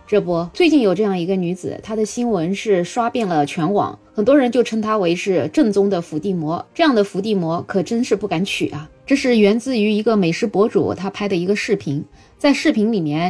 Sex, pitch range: female, 180-235 Hz